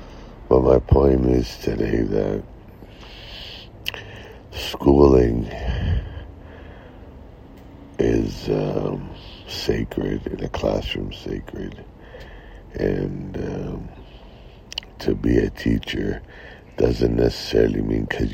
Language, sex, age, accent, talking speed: English, male, 60-79, American, 75 wpm